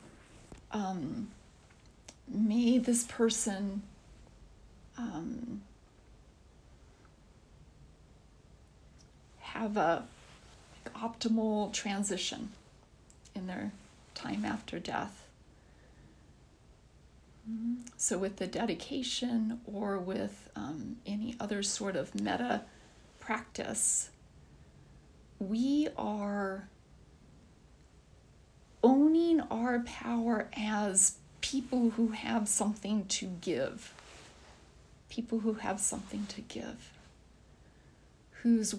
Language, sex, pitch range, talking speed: English, female, 200-235 Hz, 70 wpm